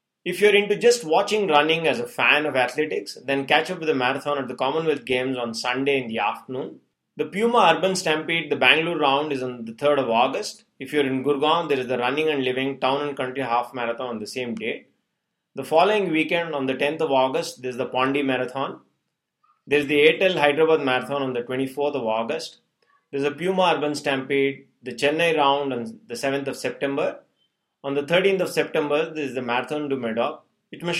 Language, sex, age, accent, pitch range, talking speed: English, male, 30-49, Indian, 130-160 Hz, 215 wpm